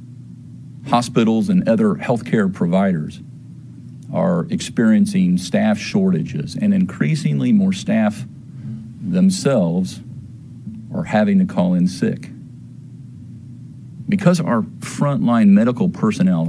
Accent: American